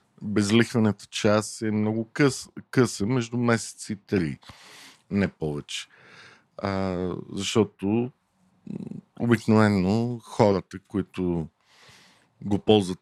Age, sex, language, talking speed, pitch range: 50-69, male, Bulgarian, 85 wpm, 95-125 Hz